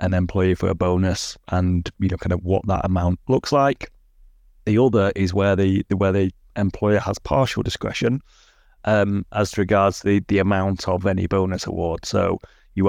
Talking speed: 180 wpm